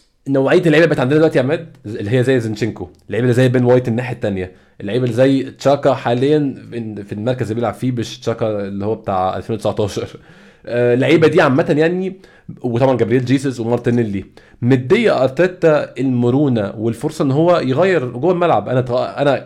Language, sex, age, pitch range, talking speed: Arabic, male, 20-39, 125-165 Hz, 165 wpm